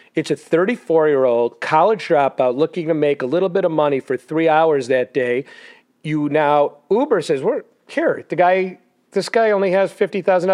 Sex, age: male, 40-59